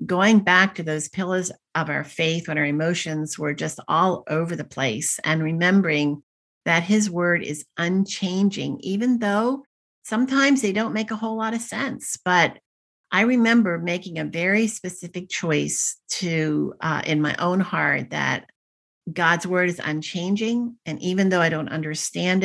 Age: 50-69